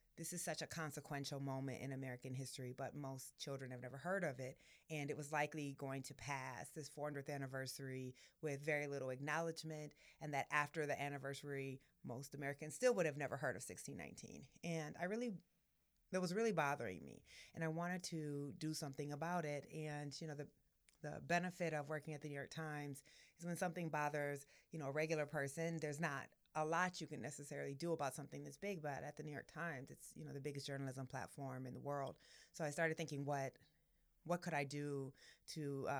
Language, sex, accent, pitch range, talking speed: English, female, American, 140-160 Hz, 205 wpm